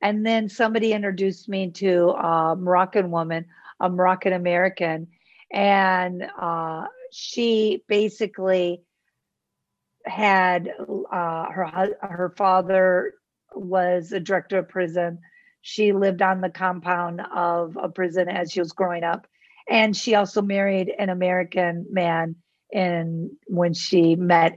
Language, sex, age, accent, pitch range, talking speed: English, female, 50-69, American, 175-210 Hz, 120 wpm